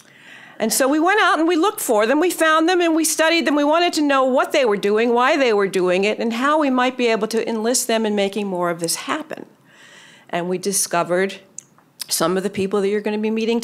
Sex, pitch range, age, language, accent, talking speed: female, 185-265 Hz, 50-69, English, American, 255 wpm